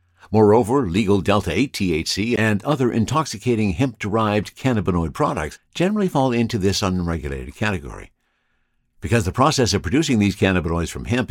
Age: 60-79